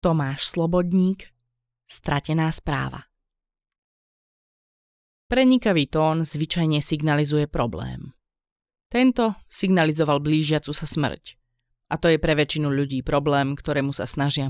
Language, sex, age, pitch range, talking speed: Slovak, female, 20-39, 130-170 Hz, 100 wpm